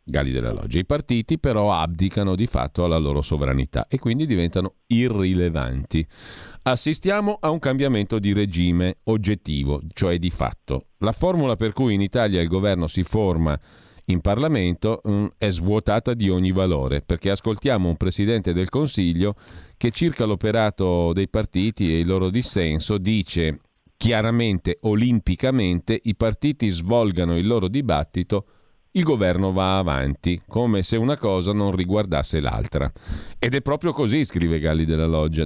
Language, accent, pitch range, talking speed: Italian, native, 85-110 Hz, 145 wpm